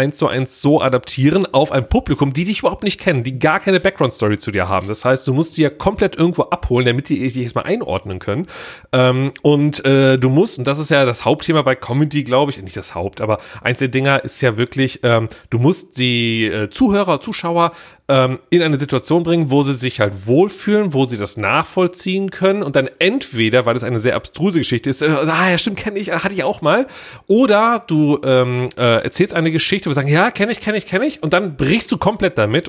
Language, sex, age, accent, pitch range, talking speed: German, male, 30-49, German, 125-165 Hz, 220 wpm